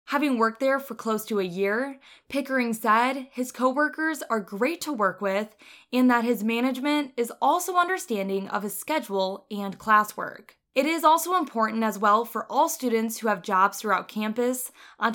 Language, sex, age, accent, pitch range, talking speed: English, female, 20-39, American, 210-280 Hz, 175 wpm